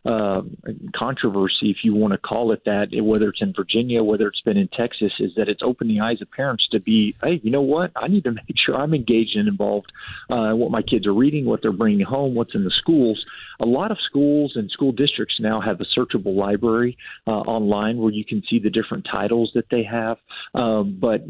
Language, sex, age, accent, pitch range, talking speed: English, male, 40-59, American, 105-120 Hz, 230 wpm